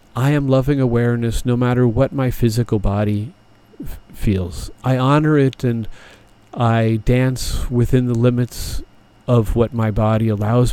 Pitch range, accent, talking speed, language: 105-125 Hz, American, 140 wpm, English